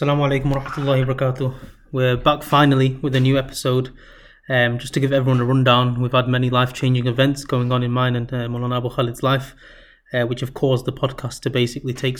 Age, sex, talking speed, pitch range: 20-39, male, 215 wpm, 125-140 Hz